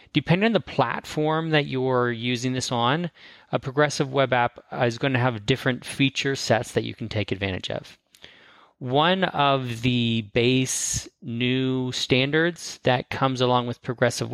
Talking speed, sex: 155 wpm, male